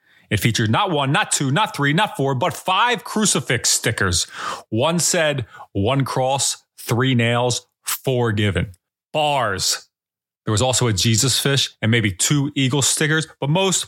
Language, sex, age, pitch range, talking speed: English, male, 30-49, 115-160 Hz, 155 wpm